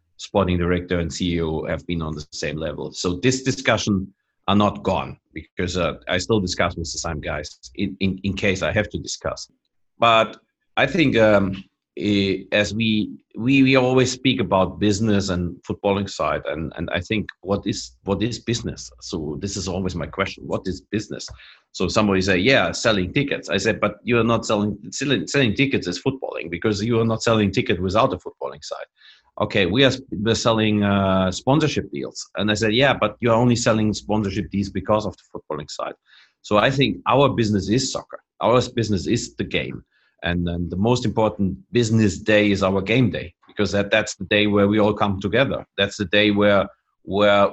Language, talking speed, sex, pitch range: English, 195 wpm, male, 95-110 Hz